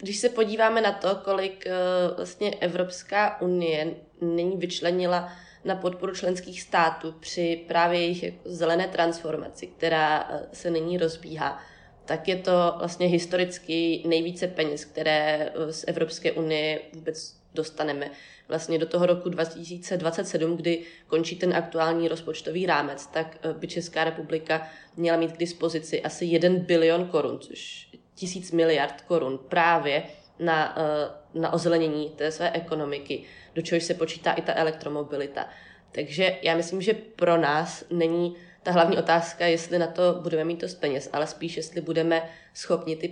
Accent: native